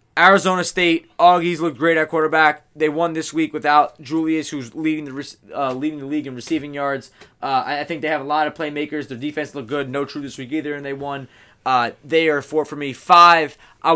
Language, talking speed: English, 225 wpm